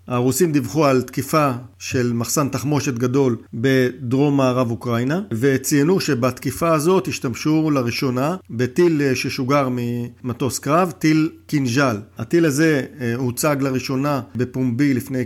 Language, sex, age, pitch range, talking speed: Hebrew, male, 50-69, 120-145 Hz, 110 wpm